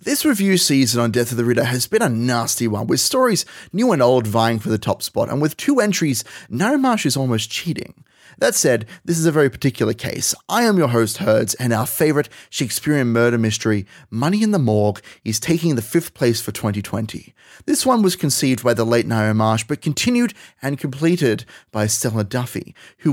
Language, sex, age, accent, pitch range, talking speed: English, male, 30-49, Australian, 115-155 Hz, 205 wpm